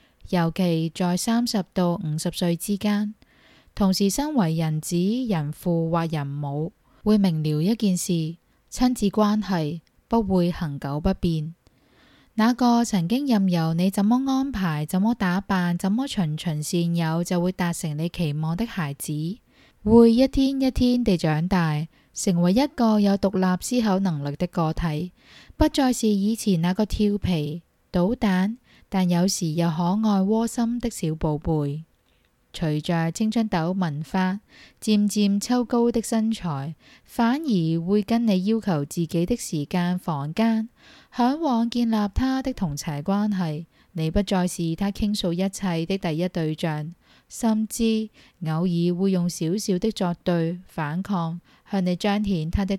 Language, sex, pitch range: Chinese, female, 165-215 Hz